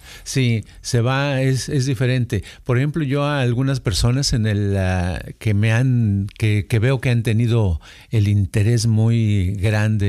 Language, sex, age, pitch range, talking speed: Spanish, male, 50-69, 110-140 Hz, 165 wpm